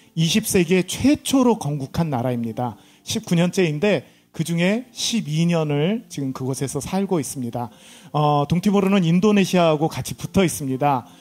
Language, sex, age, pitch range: Korean, male, 40-59, 150-195 Hz